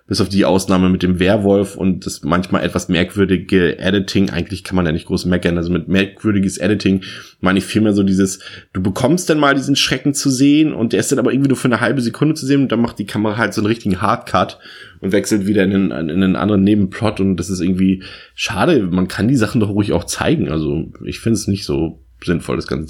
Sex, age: male, 20-39